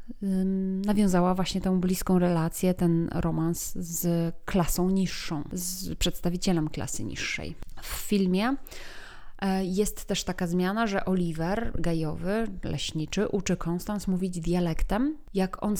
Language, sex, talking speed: Polish, female, 115 wpm